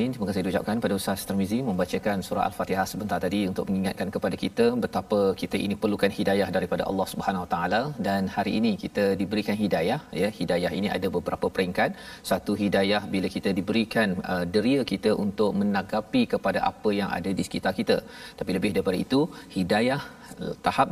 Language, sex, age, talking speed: Malayalam, male, 40-59, 165 wpm